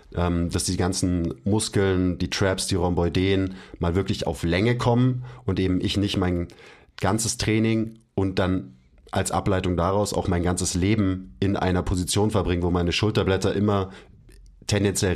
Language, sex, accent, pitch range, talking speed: German, male, German, 85-100 Hz, 150 wpm